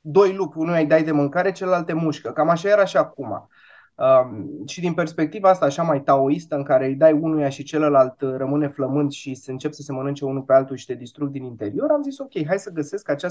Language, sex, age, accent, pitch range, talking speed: Romanian, male, 20-39, native, 145-200 Hz, 240 wpm